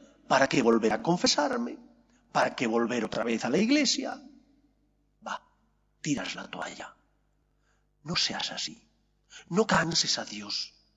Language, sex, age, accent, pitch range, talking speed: English, male, 50-69, Spanish, 165-250 Hz, 130 wpm